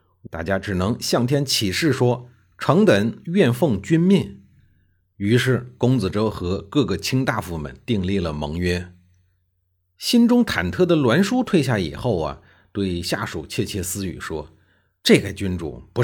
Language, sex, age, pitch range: Chinese, male, 50-69, 90-130 Hz